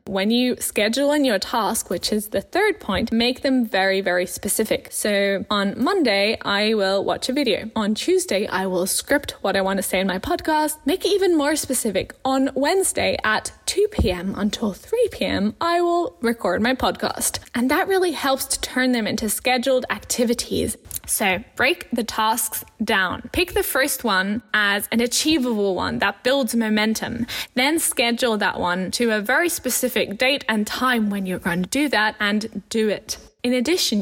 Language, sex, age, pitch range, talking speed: English, female, 10-29, 200-265 Hz, 180 wpm